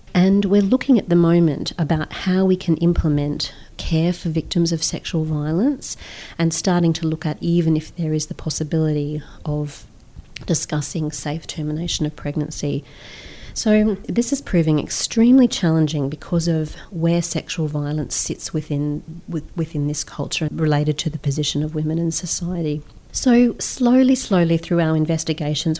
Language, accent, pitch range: English, Australian, 150-175 Hz